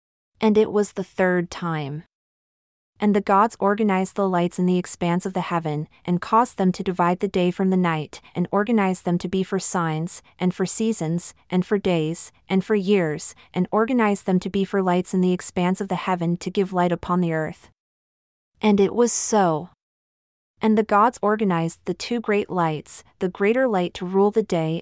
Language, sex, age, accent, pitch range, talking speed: English, female, 30-49, American, 170-205 Hz, 200 wpm